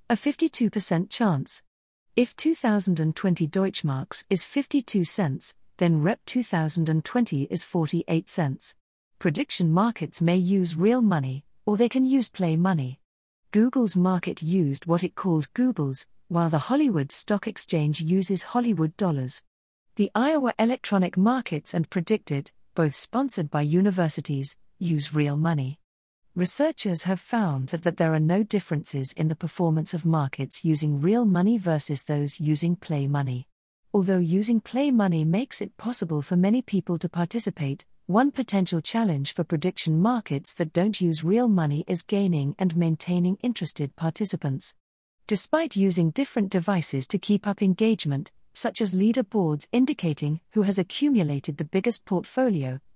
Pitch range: 155-210 Hz